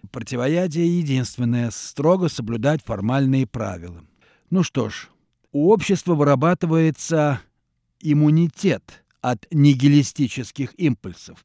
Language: Russian